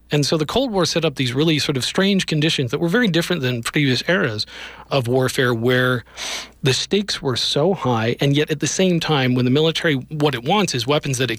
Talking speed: 230 wpm